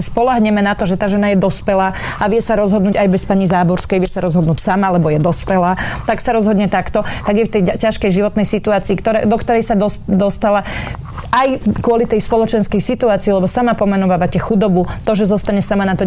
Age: 30-49